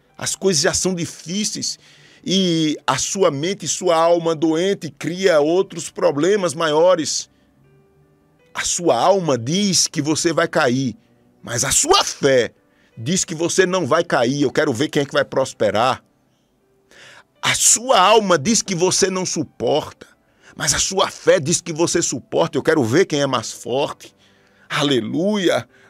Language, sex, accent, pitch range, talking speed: Portuguese, male, Brazilian, 150-210 Hz, 155 wpm